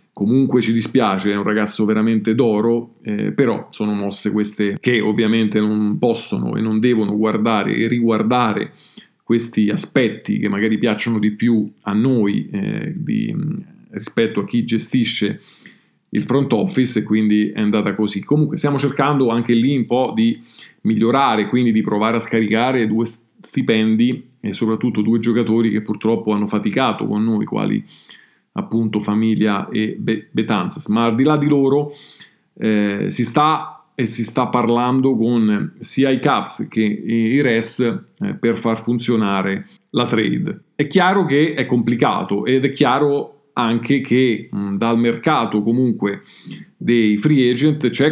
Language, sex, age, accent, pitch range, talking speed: Italian, male, 40-59, native, 110-125 Hz, 150 wpm